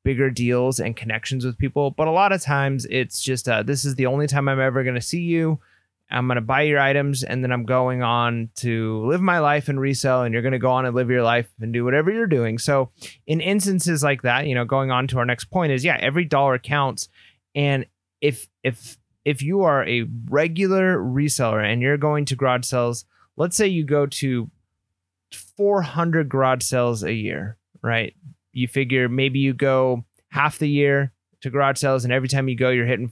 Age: 30-49